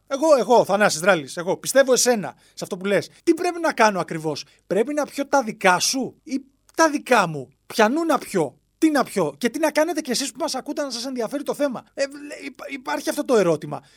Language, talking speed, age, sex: Greek, 225 wpm, 30-49, male